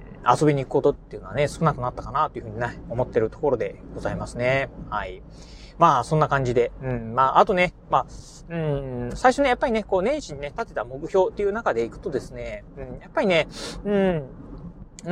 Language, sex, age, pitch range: Japanese, male, 30-49, 140-210 Hz